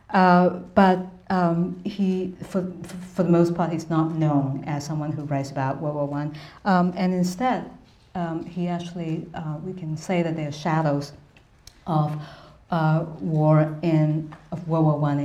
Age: 50-69